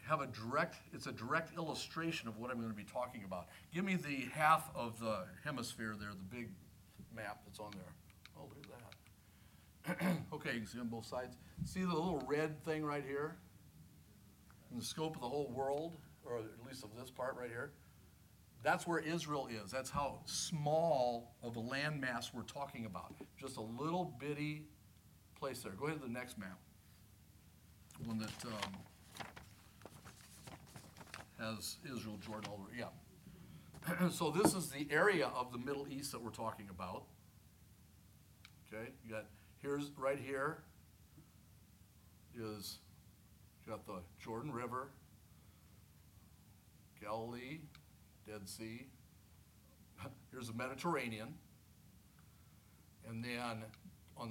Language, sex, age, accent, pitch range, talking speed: English, male, 50-69, American, 100-135 Hz, 145 wpm